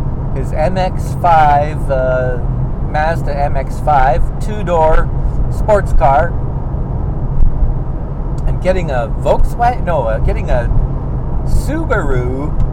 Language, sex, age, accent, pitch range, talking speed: English, male, 50-69, American, 130-150 Hz, 80 wpm